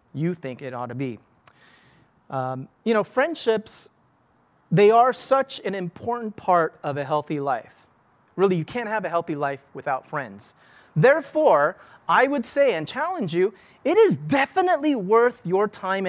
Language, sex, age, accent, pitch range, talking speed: English, male, 30-49, American, 160-220 Hz, 155 wpm